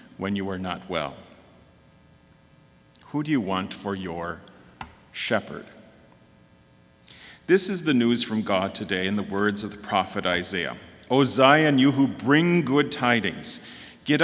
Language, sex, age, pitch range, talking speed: English, male, 40-59, 105-150 Hz, 145 wpm